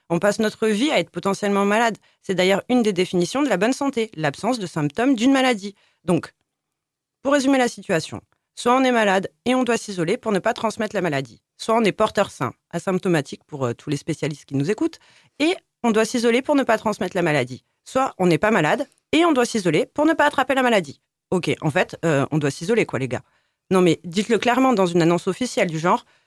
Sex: female